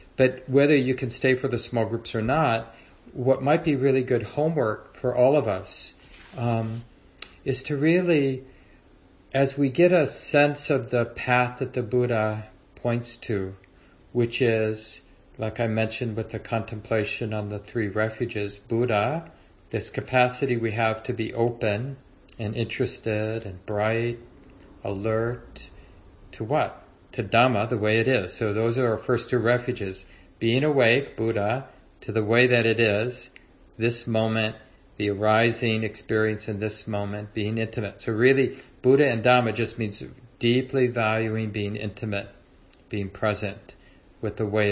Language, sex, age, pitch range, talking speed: English, male, 40-59, 105-125 Hz, 150 wpm